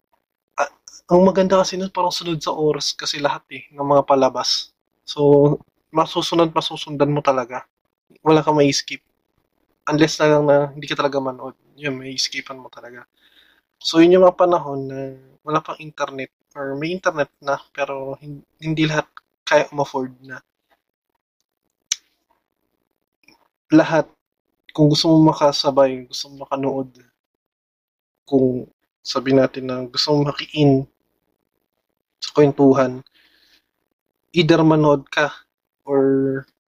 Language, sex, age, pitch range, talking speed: Filipino, male, 20-39, 130-155 Hz, 120 wpm